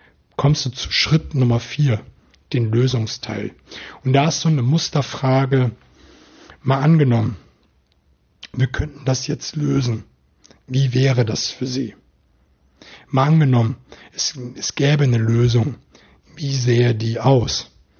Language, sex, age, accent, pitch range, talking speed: German, male, 60-79, German, 120-140 Hz, 125 wpm